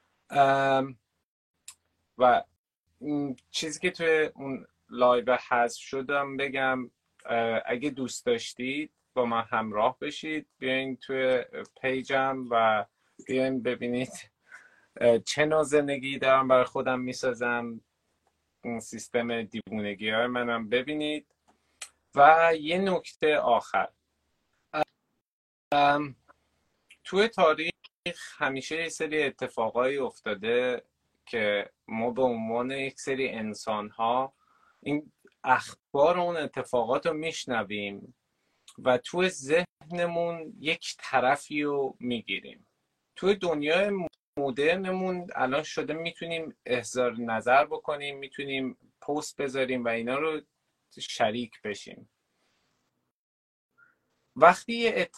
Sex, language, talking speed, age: male, Persian, 95 wpm, 30-49